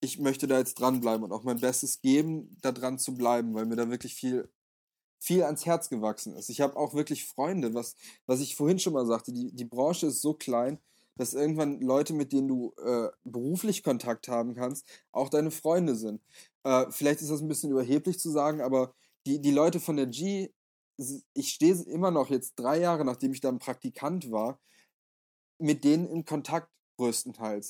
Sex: male